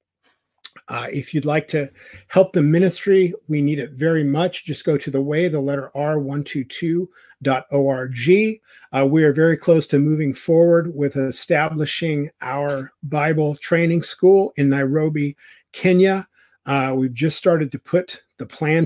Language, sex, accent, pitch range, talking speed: English, male, American, 135-155 Hz, 145 wpm